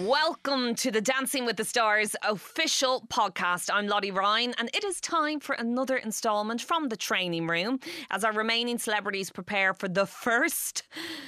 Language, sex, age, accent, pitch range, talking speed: English, female, 20-39, Irish, 190-245 Hz, 165 wpm